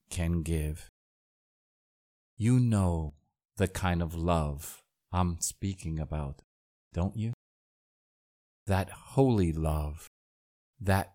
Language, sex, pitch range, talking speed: English, male, 80-105 Hz, 90 wpm